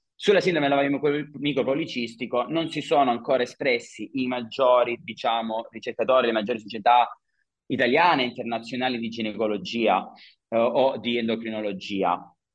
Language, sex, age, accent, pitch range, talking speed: Italian, male, 30-49, native, 115-140 Hz, 120 wpm